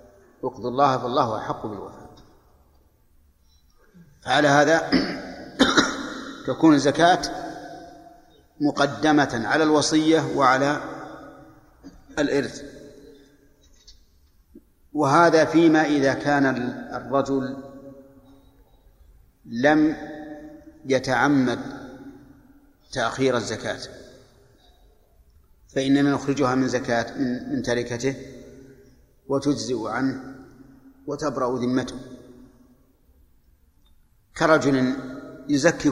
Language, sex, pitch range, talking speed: Arabic, male, 120-150 Hz, 60 wpm